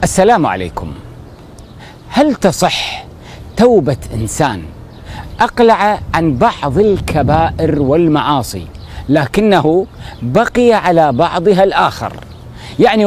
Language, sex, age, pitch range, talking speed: Arabic, male, 40-59, 130-220 Hz, 80 wpm